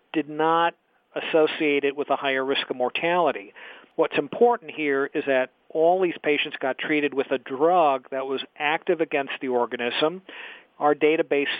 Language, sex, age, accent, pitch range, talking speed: English, male, 50-69, American, 140-165 Hz, 160 wpm